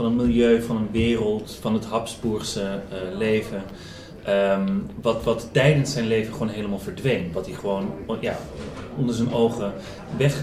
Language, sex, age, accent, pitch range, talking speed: Dutch, male, 30-49, Dutch, 105-125 Hz, 150 wpm